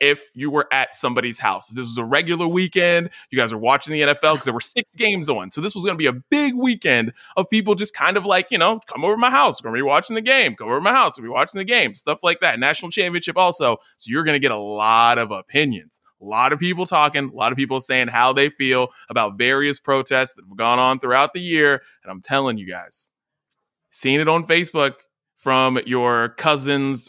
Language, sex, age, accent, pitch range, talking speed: English, male, 20-39, American, 125-185 Hz, 240 wpm